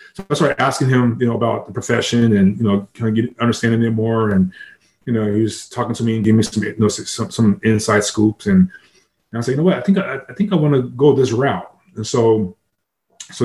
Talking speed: 270 wpm